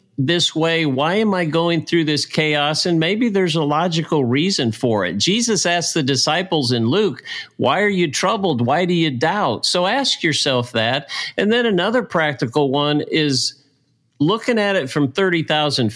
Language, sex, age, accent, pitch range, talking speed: English, male, 50-69, American, 125-175 Hz, 175 wpm